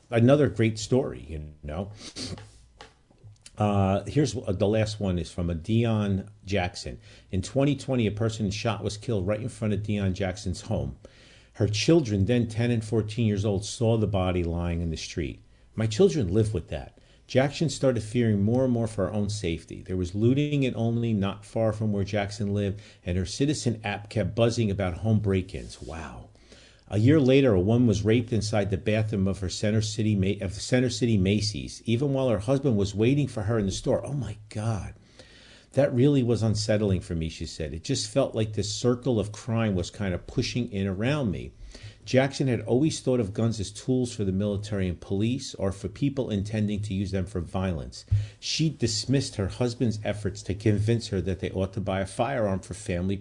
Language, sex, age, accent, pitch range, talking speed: English, male, 50-69, American, 95-120 Hz, 195 wpm